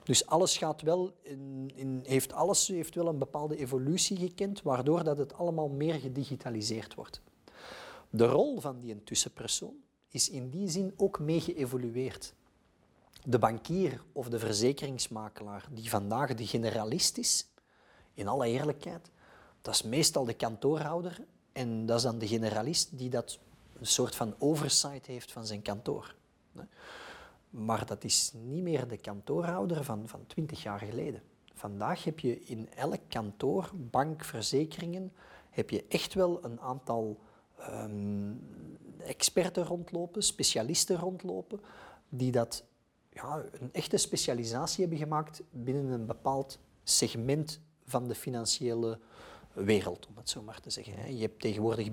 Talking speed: 140 wpm